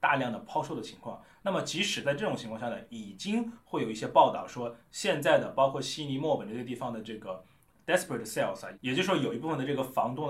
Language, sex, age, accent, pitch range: Chinese, male, 20-39, native, 120-190 Hz